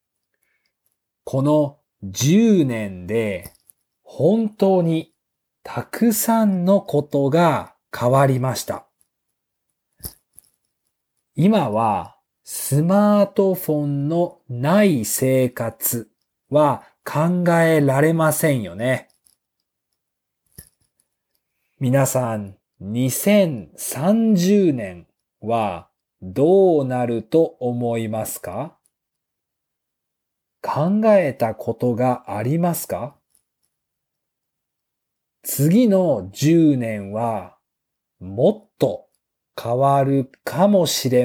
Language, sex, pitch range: Japanese, male, 120-180 Hz